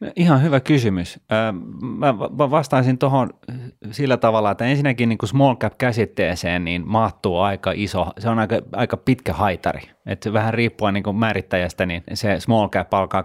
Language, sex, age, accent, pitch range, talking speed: Finnish, male, 30-49, native, 90-110 Hz, 160 wpm